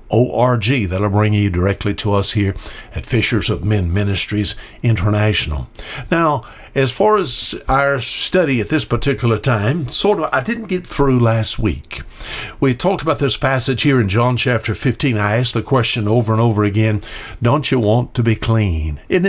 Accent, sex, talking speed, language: American, male, 175 wpm, English